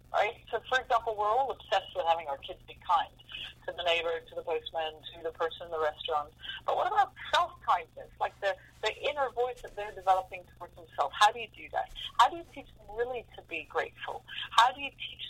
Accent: American